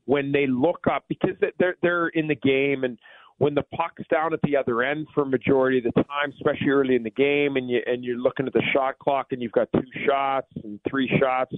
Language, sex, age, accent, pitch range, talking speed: English, male, 40-59, American, 130-145 Hz, 240 wpm